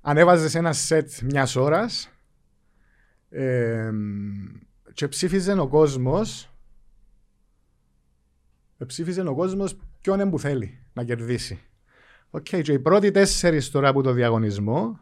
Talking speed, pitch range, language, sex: 120 wpm, 125-180 Hz, Greek, male